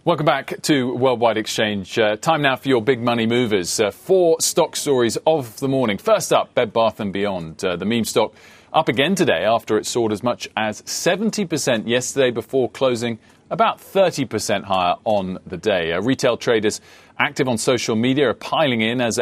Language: English